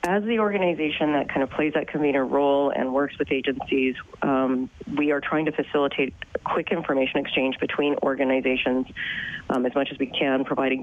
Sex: female